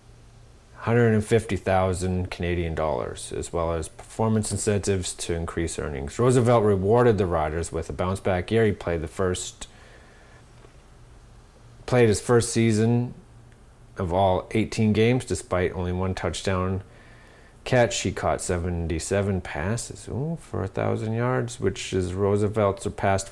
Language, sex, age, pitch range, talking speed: English, male, 30-49, 90-115 Hz, 120 wpm